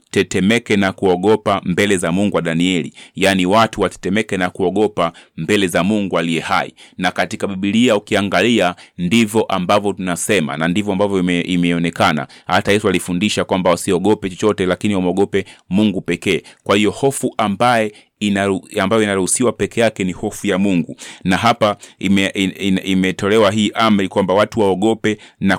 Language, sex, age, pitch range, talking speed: Swahili, male, 30-49, 95-110 Hz, 150 wpm